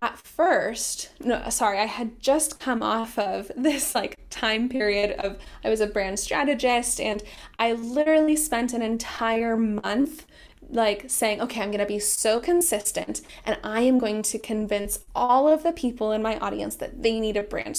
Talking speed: 180 wpm